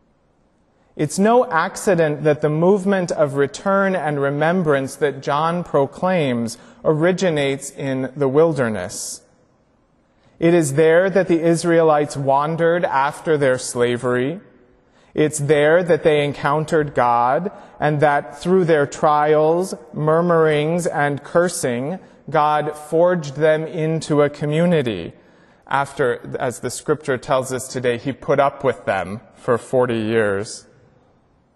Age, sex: 30-49, male